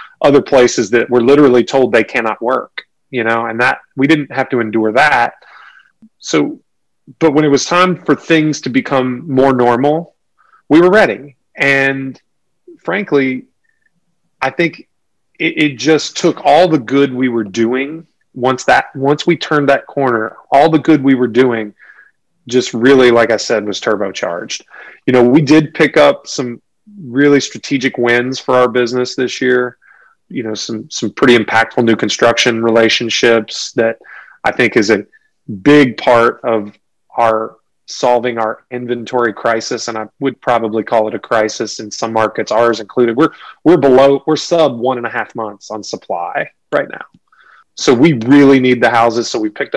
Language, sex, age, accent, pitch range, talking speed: English, male, 30-49, American, 115-145 Hz, 170 wpm